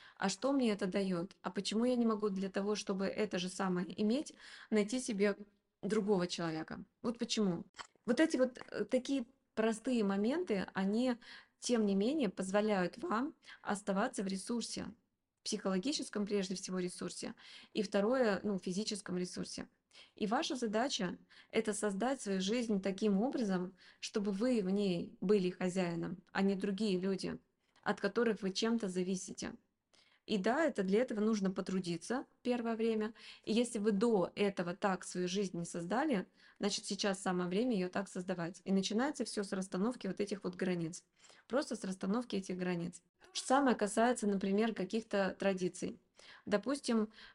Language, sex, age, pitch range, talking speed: Russian, female, 20-39, 190-230 Hz, 150 wpm